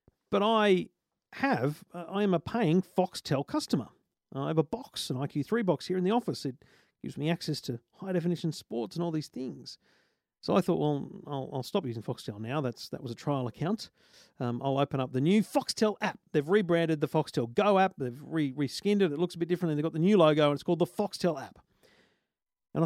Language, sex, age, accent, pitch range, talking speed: English, male, 40-59, Australian, 140-205 Hz, 215 wpm